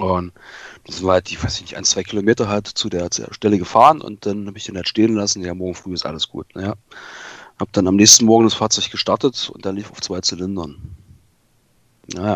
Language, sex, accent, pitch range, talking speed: German, male, German, 95-115 Hz, 220 wpm